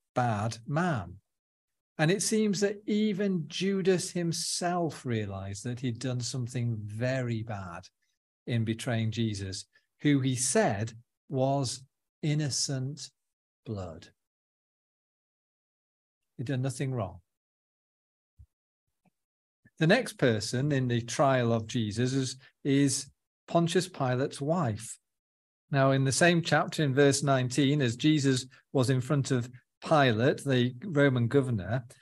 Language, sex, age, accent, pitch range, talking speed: English, male, 40-59, British, 115-160 Hz, 110 wpm